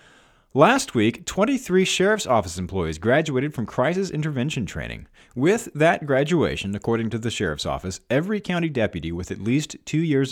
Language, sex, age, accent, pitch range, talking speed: English, male, 40-59, American, 100-145 Hz, 155 wpm